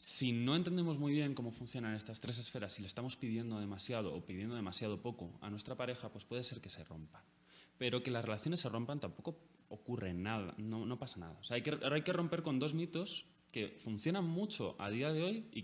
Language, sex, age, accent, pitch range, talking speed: Spanish, male, 20-39, Spanish, 100-135 Hz, 225 wpm